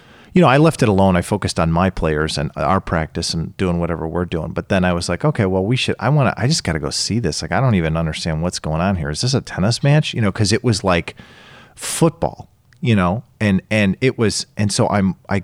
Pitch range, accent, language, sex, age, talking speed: 85-120 Hz, American, English, male, 40-59, 260 wpm